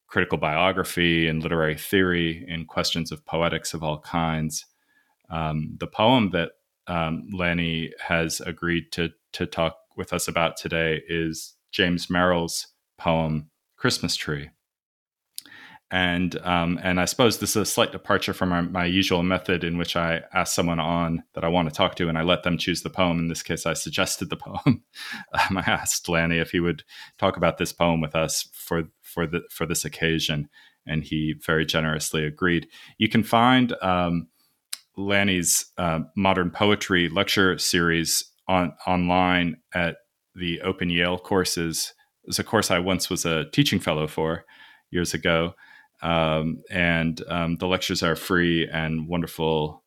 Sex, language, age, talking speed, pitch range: male, English, 20-39, 165 wpm, 80-90 Hz